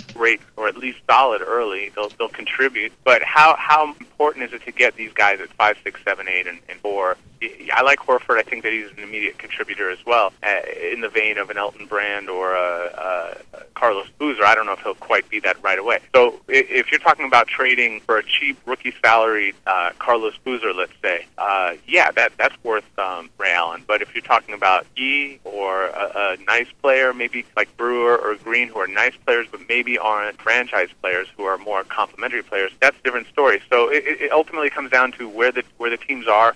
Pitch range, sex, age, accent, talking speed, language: 115-150 Hz, male, 30-49, American, 215 wpm, English